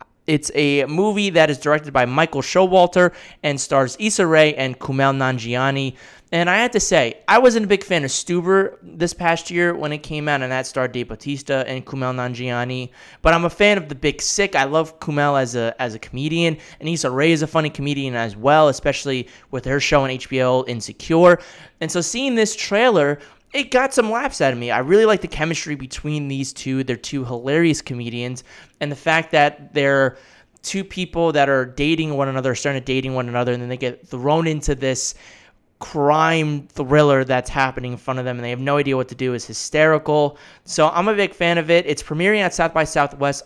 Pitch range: 130-165 Hz